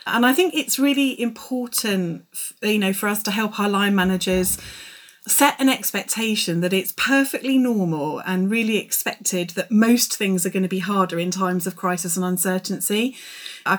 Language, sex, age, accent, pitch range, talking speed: English, female, 30-49, British, 180-215 Hz, 175 wpm